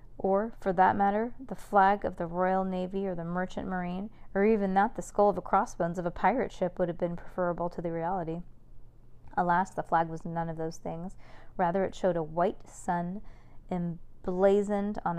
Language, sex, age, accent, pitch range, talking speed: English, female, 20-39, American, 175-205 Hz, 195 wpm